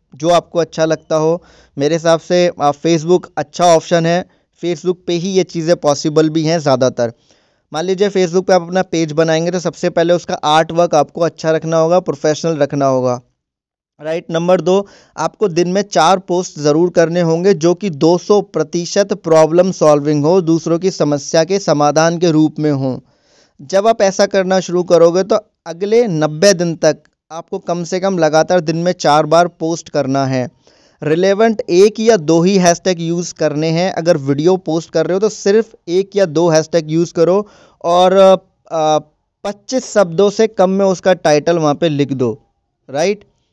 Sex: male